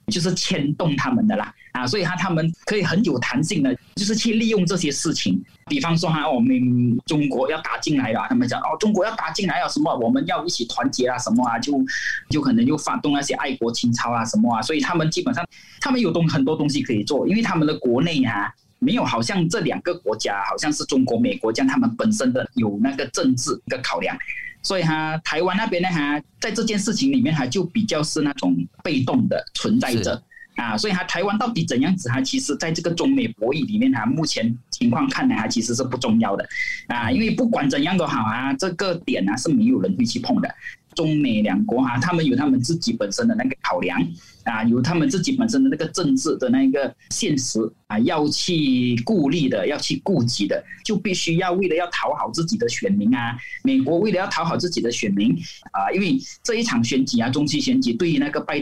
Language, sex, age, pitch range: Chinese, male, 20-39, 145-240 Hz